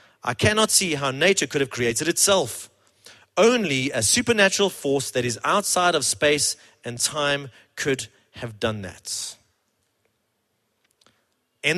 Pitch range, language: 120-180 Hz, English